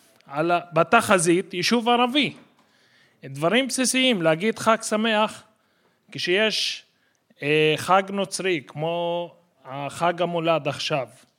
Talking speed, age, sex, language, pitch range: 85 wpm, 30-49, male, Hebrew, 160-225 Hz